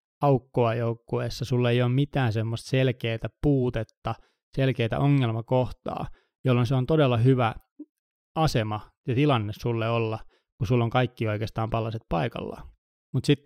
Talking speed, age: 135 wpm, 20-39